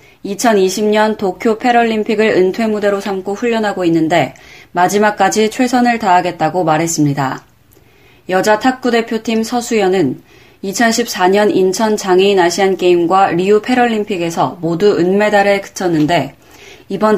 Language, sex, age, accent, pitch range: Korean, female, 20-39, native, 180-215 Hz